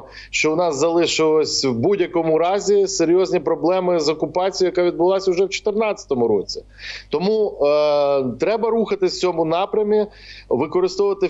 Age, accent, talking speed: 40-59, native, 135 wpm